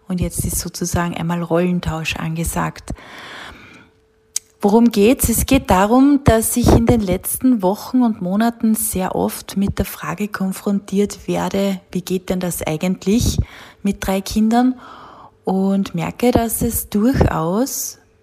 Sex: female